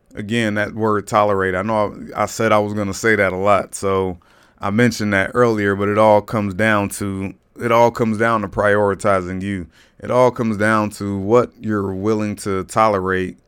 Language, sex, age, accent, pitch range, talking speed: English, male, 30-49, American, 95-115 Hz, 200 wpm